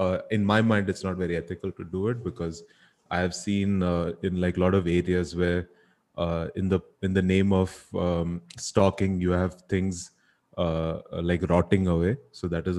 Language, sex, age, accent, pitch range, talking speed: Hindi, male, 30-49, native, 90-110 Hz, 190 wpm